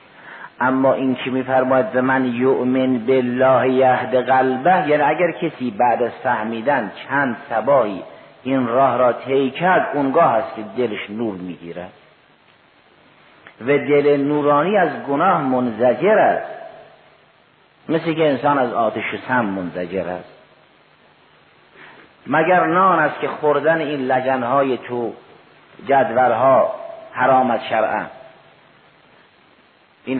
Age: 50-69